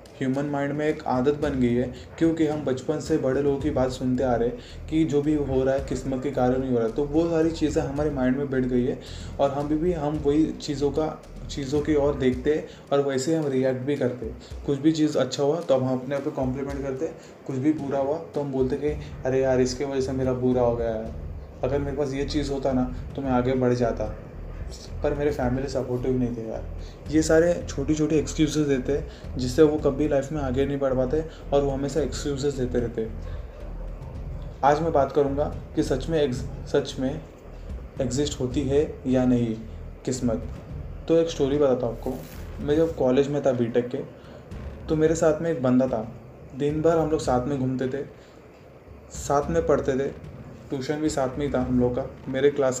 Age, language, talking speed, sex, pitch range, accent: 20-39, Hindi, 215 wpm, male, 125-150 Hz, native